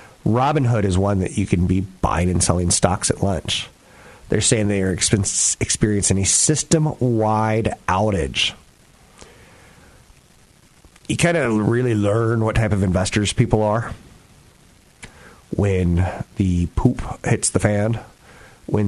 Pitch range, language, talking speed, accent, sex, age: 90-110 Hz, English, 120 wpm, American, male, 30-49